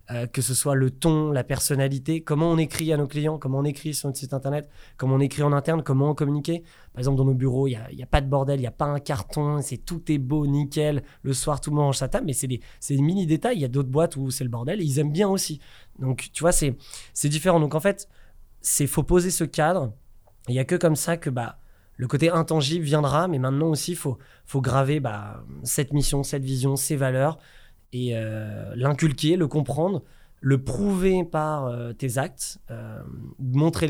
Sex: male